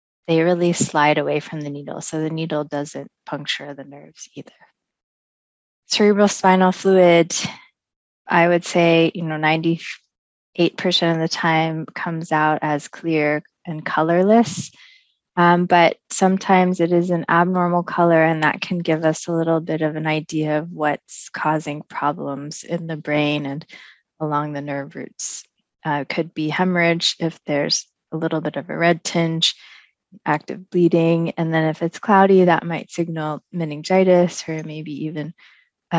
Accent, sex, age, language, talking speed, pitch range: American, female, 20-39, English, 155 wpm, 155-180 Hz